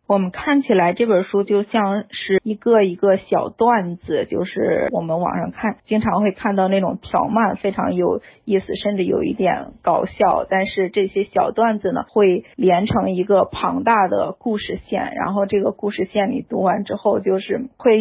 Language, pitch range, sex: Chinese, 195-230 Hz, female